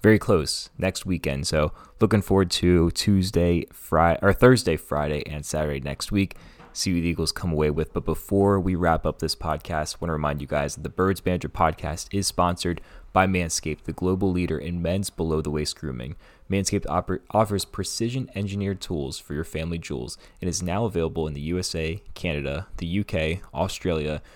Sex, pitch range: male, 80-100 Hz